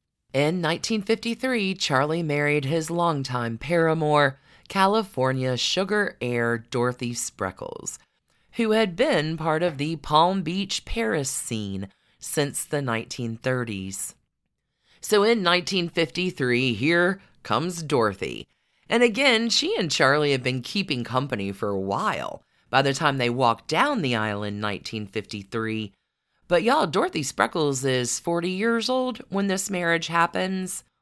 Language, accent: English, American